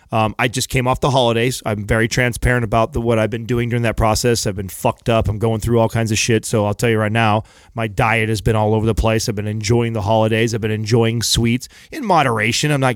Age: 30-49